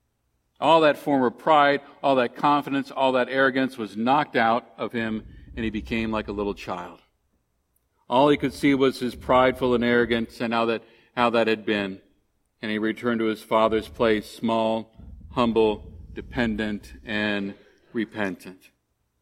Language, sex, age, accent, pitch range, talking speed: English, male, 50-69, American, 110-135 Hz, 155 wpm